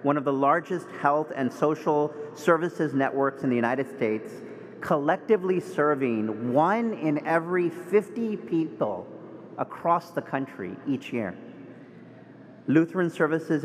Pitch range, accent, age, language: 130-155 Hz, American, 40-59, English